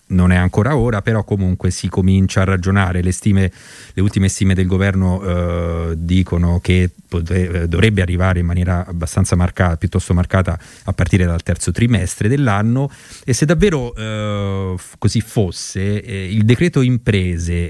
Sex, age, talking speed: male, 30-49, 155 wpm